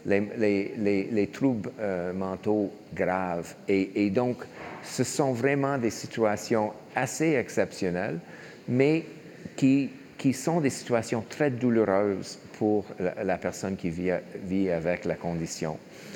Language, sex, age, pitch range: French, male, 50-69, 100-125 Hz